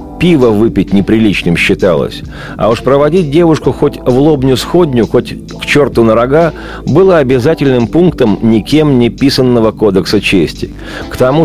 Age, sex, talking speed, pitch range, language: 50-69, male, 140 wpm, 110-145 Hz, Russian